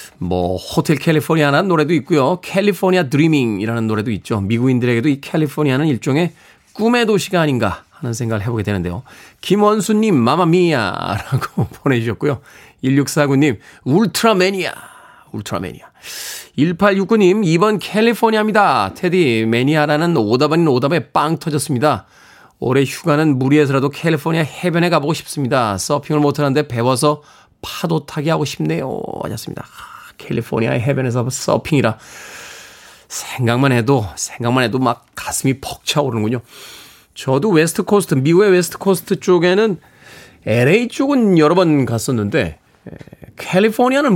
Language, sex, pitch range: Korean, male, 120-180 Hz